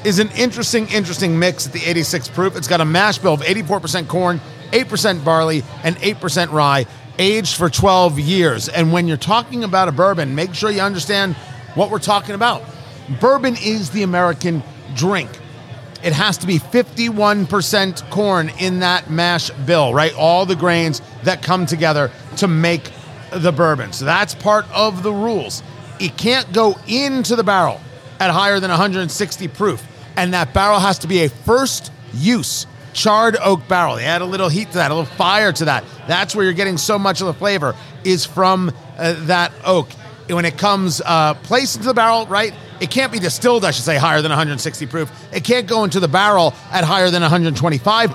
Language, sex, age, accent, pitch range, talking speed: English, male, 40-59, American, 150-205 Hz, 190 wpm